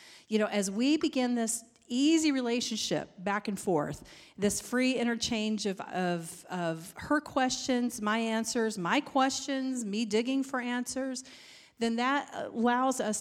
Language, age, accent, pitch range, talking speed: English, 40-59, American, 185-230 Hz, 140 wpm